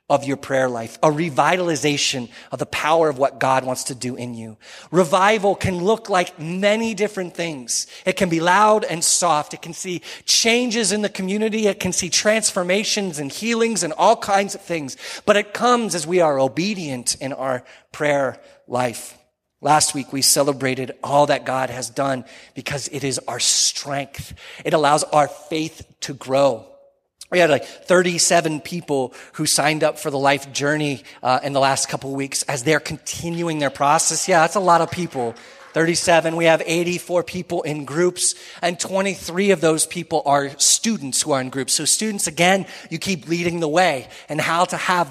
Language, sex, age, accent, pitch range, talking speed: English, male, 30-49, American, 140-180 Hz, 185 wpm